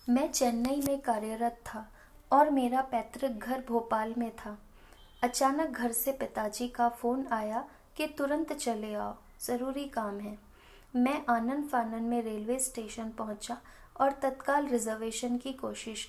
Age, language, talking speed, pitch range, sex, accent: 20-39, Hindi, 140 wpm, 225-265 Hz, female, native